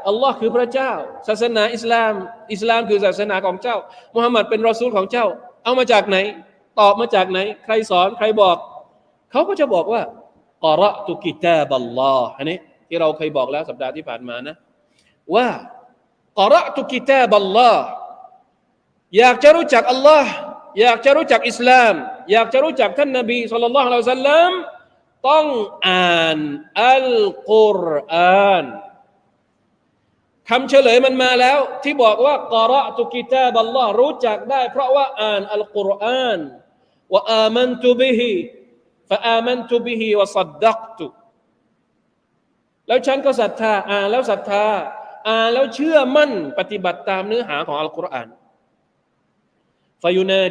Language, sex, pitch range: Thai, male, 190-255 Hz